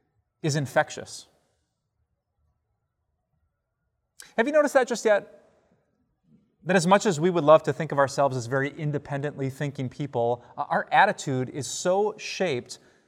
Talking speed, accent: 135 wpm, American